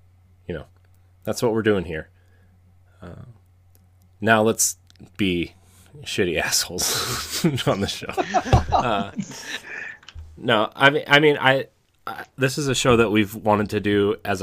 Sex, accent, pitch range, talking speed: male, American, 90-105 Hz, 140 wpm